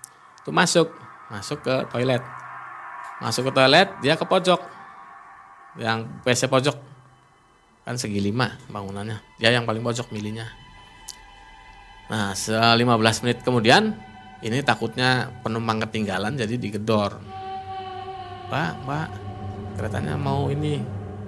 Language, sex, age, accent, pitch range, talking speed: Indonesian, male, 20-39, native, 100-130 Hz, 110 wpm